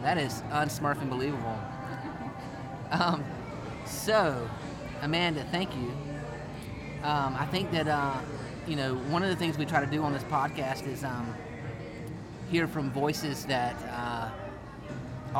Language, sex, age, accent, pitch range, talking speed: English, male, 30-49, American, 130-155 Hz, 135 wpm